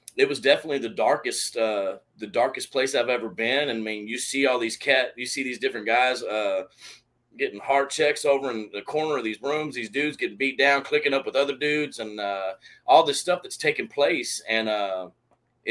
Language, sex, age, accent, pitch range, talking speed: English, male, 30-49, American, 120-165 Hz, 215 wpm